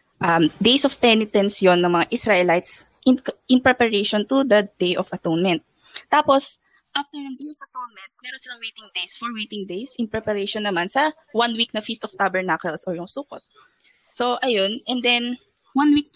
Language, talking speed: Filipino, 180 wpm